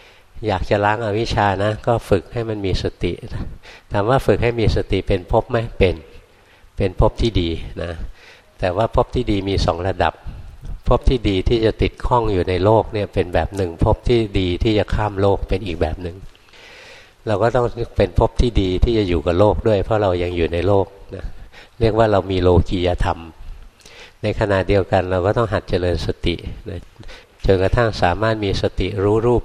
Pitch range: 90-110 Hz